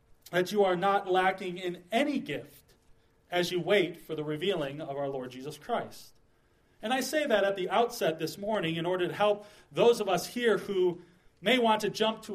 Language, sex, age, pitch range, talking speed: English, male, 30-49, 160-210 Hz, 205 wpm